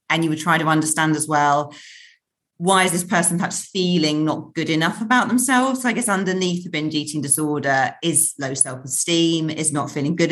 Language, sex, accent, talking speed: English, female, British, 200 wpm